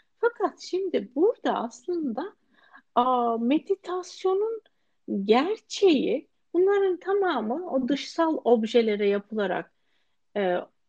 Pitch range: 225-350 Hz